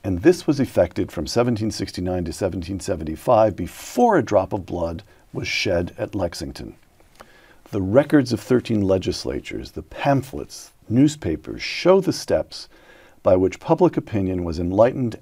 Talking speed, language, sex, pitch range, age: 135 wpm, English, male, 95-120 Hz, 50-69